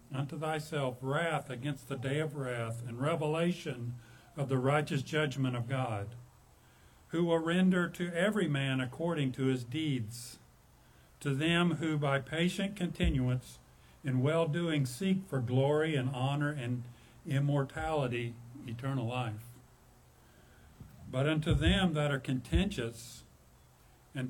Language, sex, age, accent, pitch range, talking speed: English, male, 50-69, American, 125-160 Hz, 125 wpm